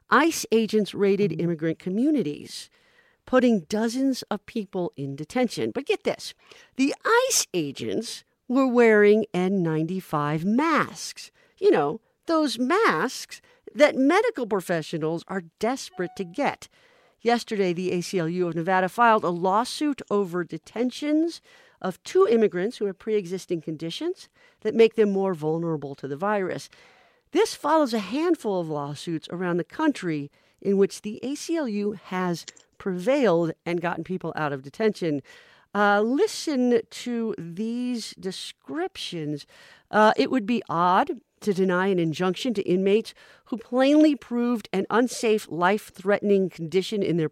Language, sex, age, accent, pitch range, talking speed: English, female, 50-69, American, 175-250 Hz, 130 wpm